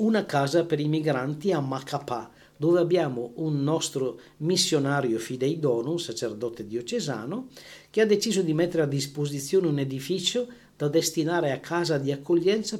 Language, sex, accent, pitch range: Italian, male, native, 125-170 Hz